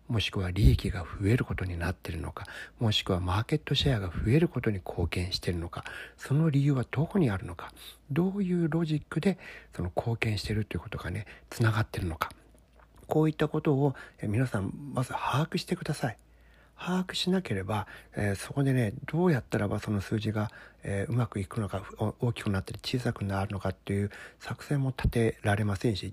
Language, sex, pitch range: Japanese, male, 95-140 Hz